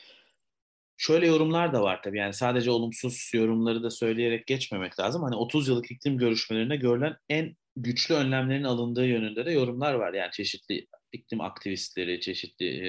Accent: native